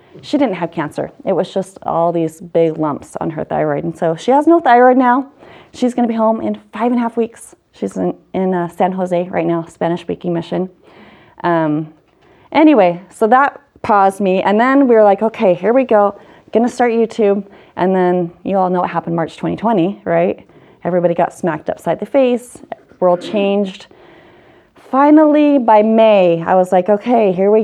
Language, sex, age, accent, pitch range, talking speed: English, female, 30-49, American, 175-230 Hz, 195 wpm